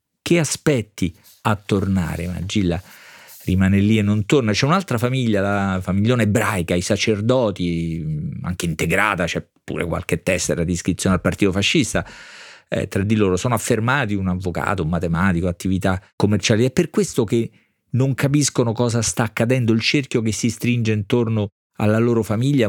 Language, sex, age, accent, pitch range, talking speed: Italian, male, 40-59, native, 100-125 Hz, 160 wpm